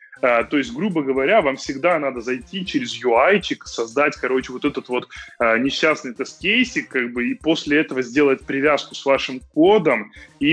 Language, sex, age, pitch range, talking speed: Russian, male, 20-39, 130-165 Hz, 170 wpm